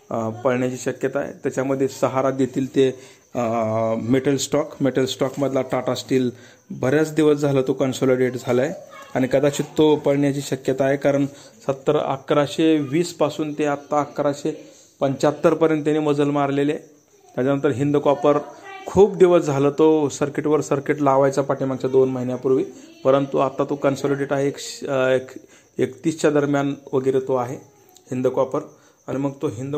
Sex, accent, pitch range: male, native, 130-145 Hz